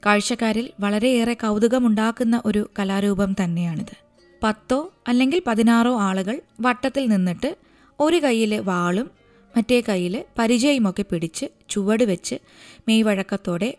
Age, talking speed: 20-39, 95 wpm